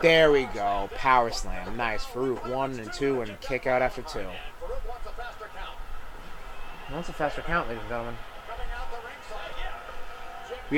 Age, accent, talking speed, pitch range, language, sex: 30-49, American, 135 wpm, 130-190 Hz, English, male